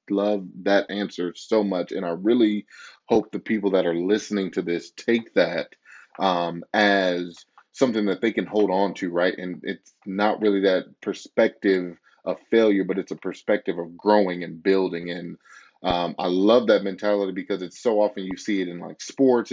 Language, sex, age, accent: English, male, 30-49, American